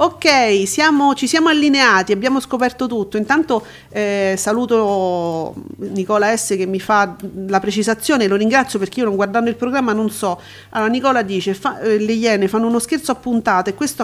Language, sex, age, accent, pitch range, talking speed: Italian, female, 40-59, native, 205-265 Hz, 170 wpm